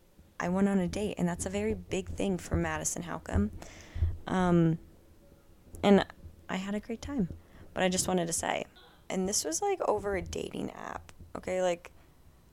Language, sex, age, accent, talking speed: English, female, 20-39, American, 175 wpm